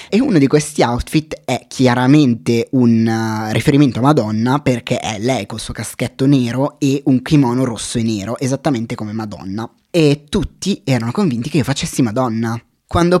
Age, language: 20-39, Italian